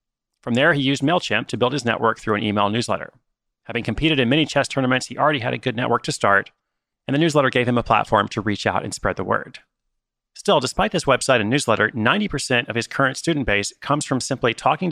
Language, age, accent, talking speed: English, 30-49, American, 230 wpm